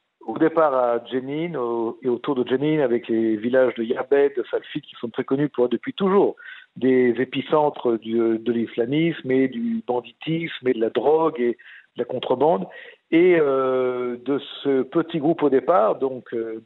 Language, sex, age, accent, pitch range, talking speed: French, male, 50-69, French, 120-145 Hz, 175 wpm